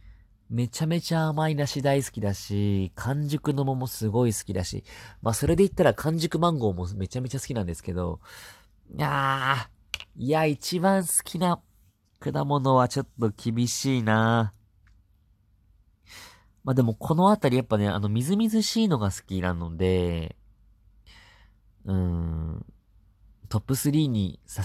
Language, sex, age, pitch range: Japanese, male, 40-59, 95-120 Hz